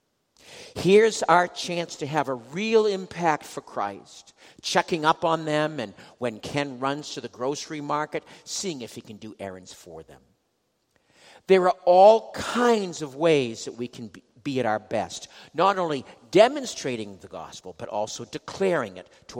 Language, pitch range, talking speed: English, 110-165 Hz, 165 wpm